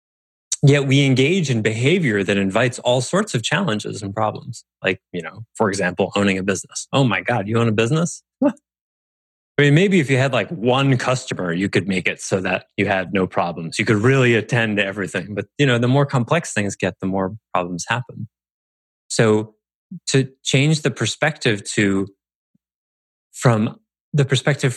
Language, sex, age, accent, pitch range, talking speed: English, male, 30-49, American, 100-135 Hz, 180 wpm